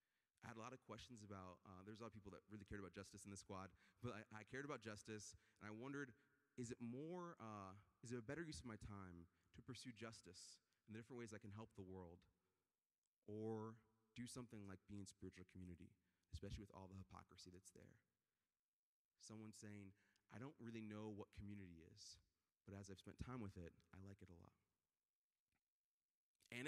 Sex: male